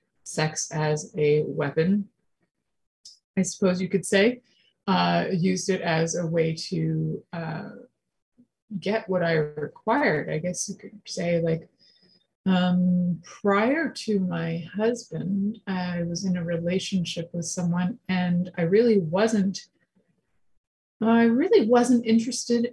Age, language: 30-49, English